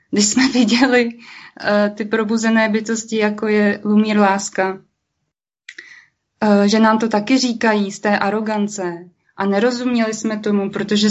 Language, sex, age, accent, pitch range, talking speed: Czech, female, 20-39, native, 190-215 Hz, 135 wpm